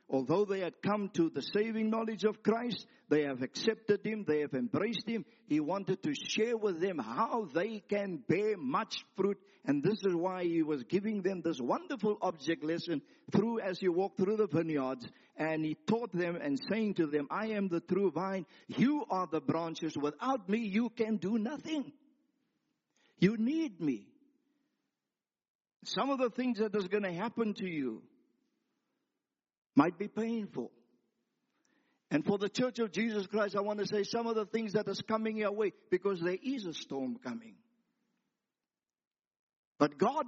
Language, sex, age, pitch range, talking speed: English, male, 50-69, 175-250 Hz, 175 wpm